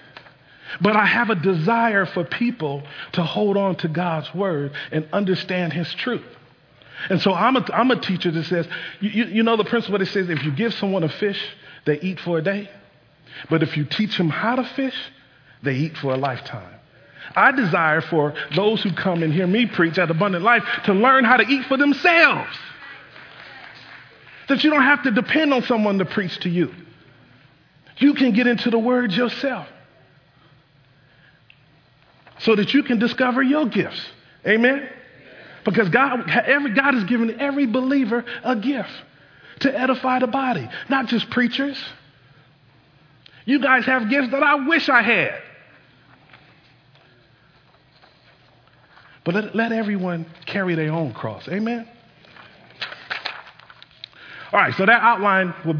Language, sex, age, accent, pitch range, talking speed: English, male, 40-59, American, 150-240 Hz, 155 wpm